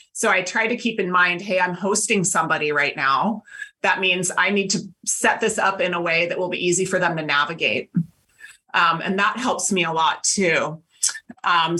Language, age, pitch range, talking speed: English, 30-49, 170-210 Hz, 210 wpm